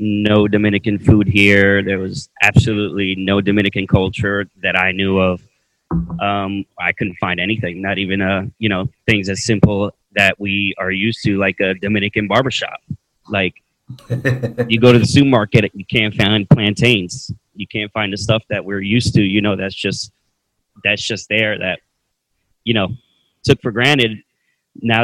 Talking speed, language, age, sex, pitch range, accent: 165 wpm, English, 30-49, male, 95-110 Hz, American